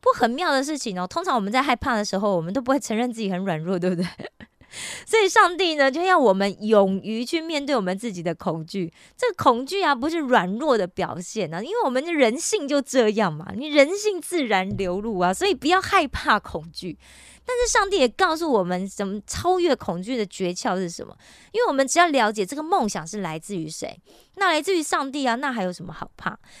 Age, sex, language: 20-39, female, Korean